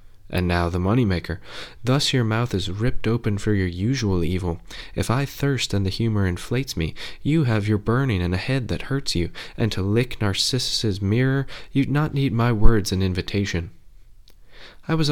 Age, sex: 20-39, male